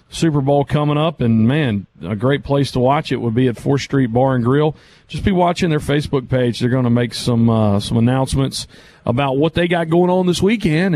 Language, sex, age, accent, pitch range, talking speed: English, male, 40-59, American, 130-165 Hz, 225 wpm